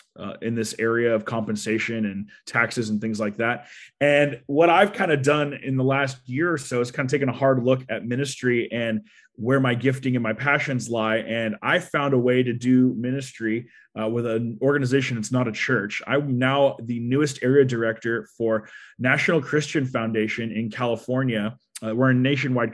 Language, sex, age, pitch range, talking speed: English, male, 20-39, 120-140 Hz, 195 wpm